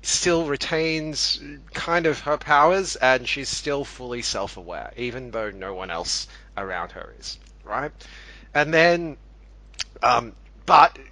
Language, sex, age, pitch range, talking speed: English, male, 30-49, 115-155 Hz, 130 wpm